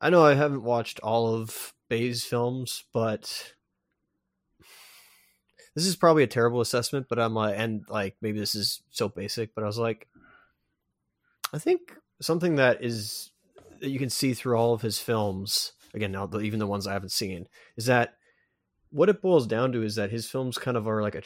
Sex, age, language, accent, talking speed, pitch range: male, 20-39, English, American, 195 wpm, 100-120 Hz